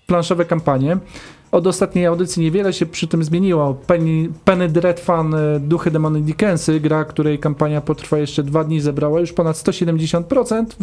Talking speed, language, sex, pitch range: 150 wpm, Polish, male, 150-185 Hz